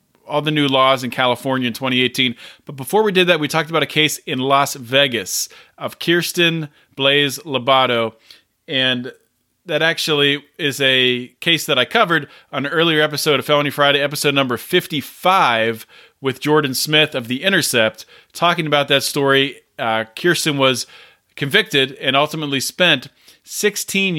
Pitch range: 125-155 Hz